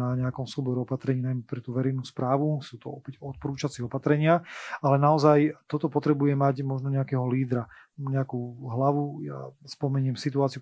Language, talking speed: Slovak, 155 wpm